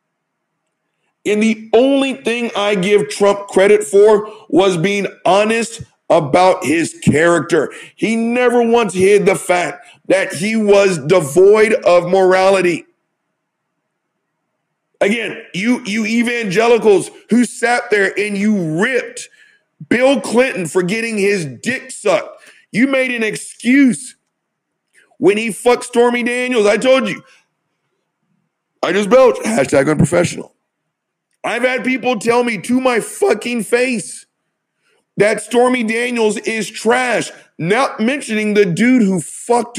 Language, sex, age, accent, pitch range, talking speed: English, male, 50-69, American, 200-250 Hz, 120 wpm